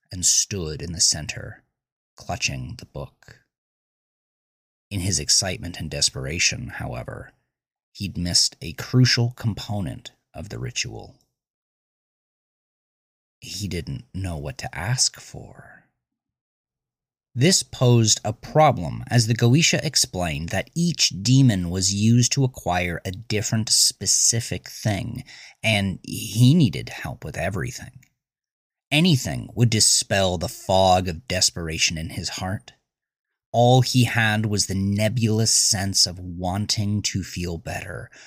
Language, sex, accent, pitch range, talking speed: English, male, American, 90-125 Hz, 120 wpm